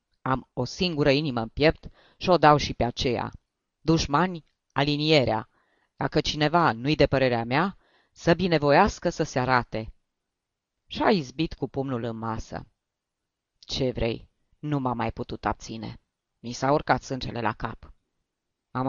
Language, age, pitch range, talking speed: Romanian, 30-49, 120-175 Hz, 145 wpm